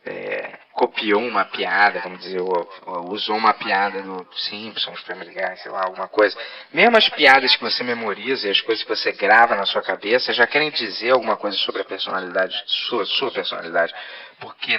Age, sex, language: 20-39, male, Portuguese